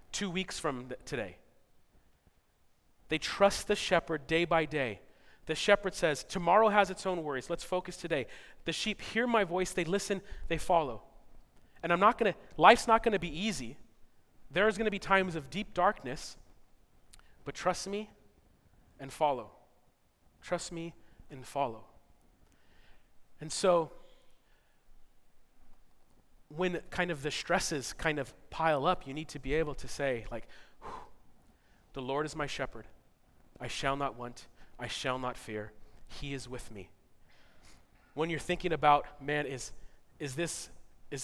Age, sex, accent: 30-49, male, American